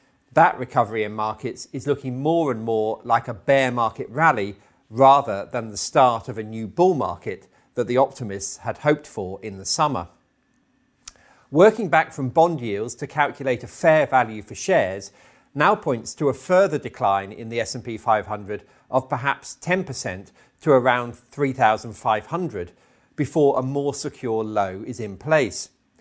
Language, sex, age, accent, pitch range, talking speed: English, male, 40-59, British, 110-145 Hz, 155 wpm